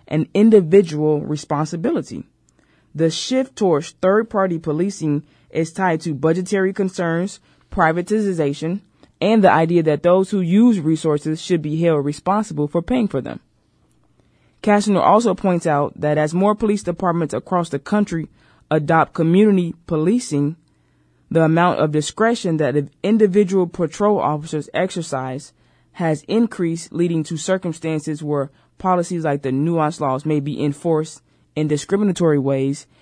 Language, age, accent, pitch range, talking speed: English, 20-39, American, 145-175 Hz, 130 wpm